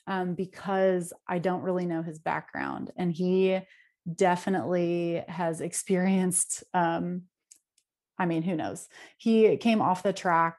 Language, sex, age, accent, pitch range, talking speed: English, female, 30-49, American, 175-210 Hz, 130 wpm